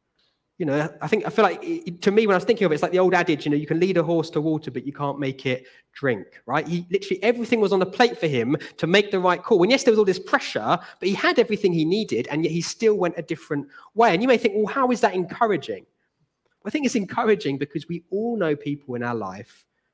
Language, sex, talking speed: English, male, 275 wpm